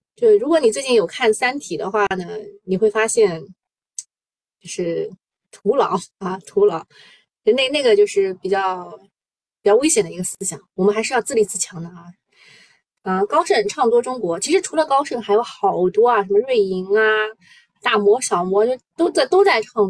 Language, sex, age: Chinese, female, 20-39